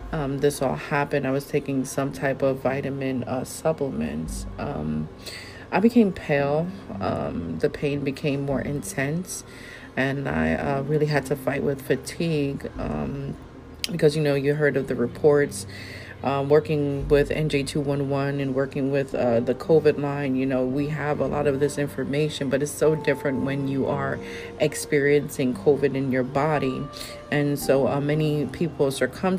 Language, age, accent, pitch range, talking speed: English, 30-49, American, 135-155 Hz, 160 wpm